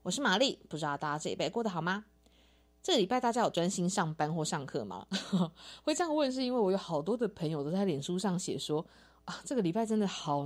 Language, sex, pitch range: Chinese, female, 155-205 Hz